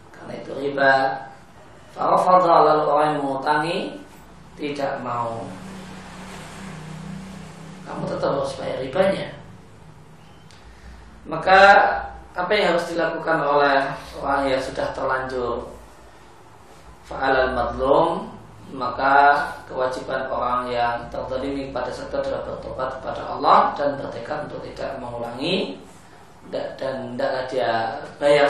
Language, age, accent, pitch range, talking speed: Indonesian, 20-39, native, 115-145 Hz, 95 wpm